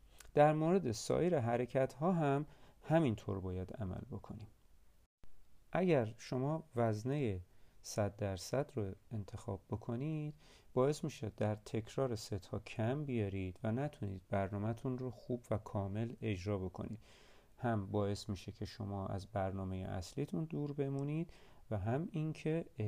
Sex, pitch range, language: male, 100-135 Hz, Persian